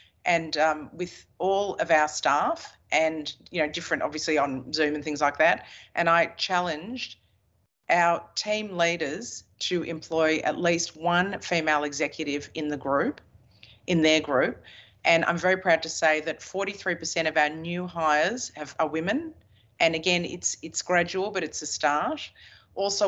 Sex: female